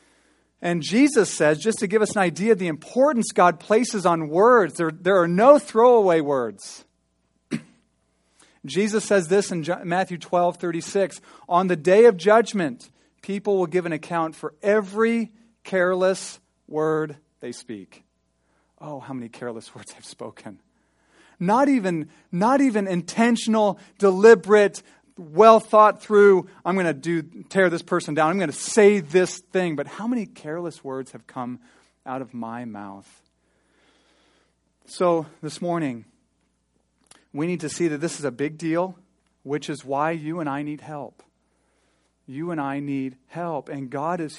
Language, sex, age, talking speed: English, male, 40-59, 155 wpm